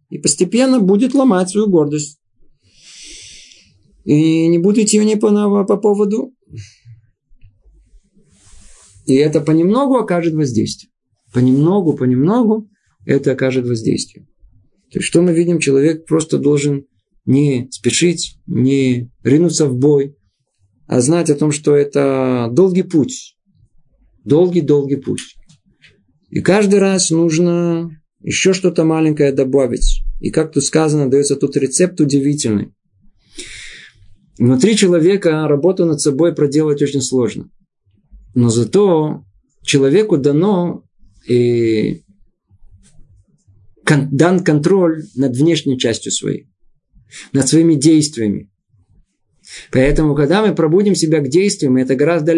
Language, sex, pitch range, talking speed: Russian, male, 130-170 Hz, 110 wpm